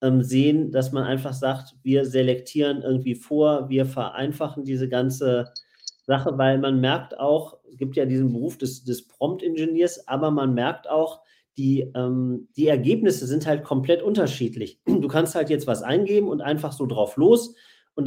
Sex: male